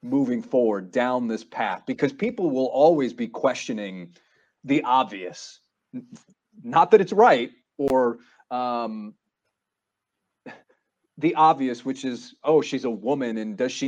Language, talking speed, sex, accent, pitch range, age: English, 130 wpm, male, American, 130-185 Hz, 30-49